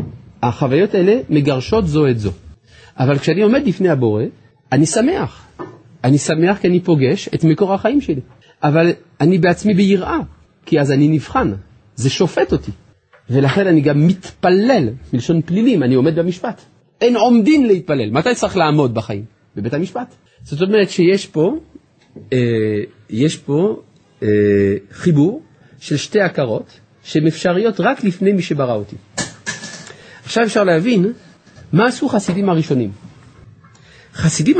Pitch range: 130-195 Hz